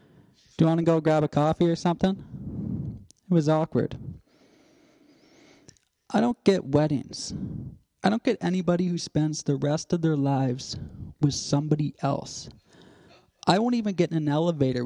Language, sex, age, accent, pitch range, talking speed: English, male, 20-39, American, 140-175 Hz, 150 wpm